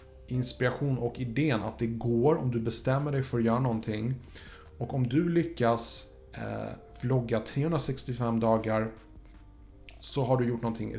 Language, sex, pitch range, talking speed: Swedish, male, 110-130 Hz, 140 wpm